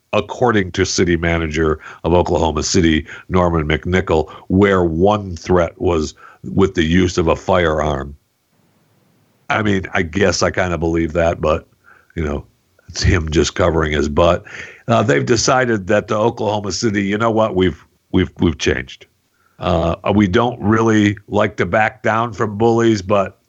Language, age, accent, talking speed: English, 60-79, American, 160 wpm